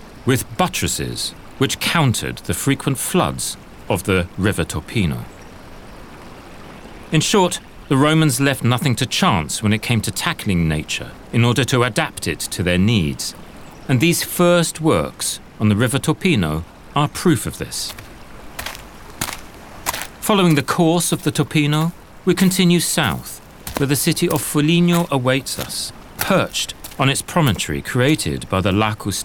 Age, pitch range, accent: 40-59, 100-150 Hz, British